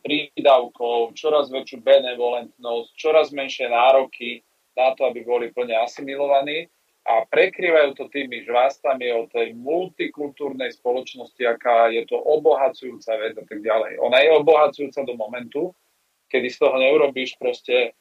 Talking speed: 135 wpm